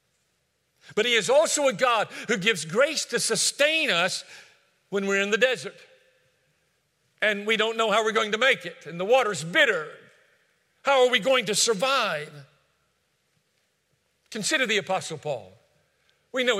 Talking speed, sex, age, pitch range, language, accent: 155 wpm, male, 50-69, 190-270 Hz, English, American